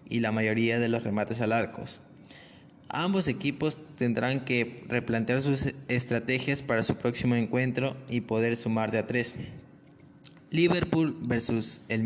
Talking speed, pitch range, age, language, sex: 140 wpm, 115-130 Hz, 20-39, Spanish, male